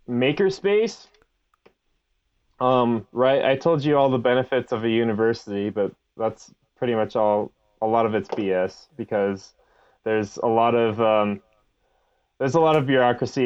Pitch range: 110-125 Hz